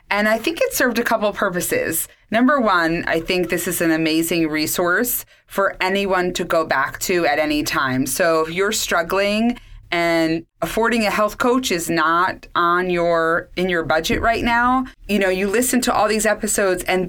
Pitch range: 165-220 Hz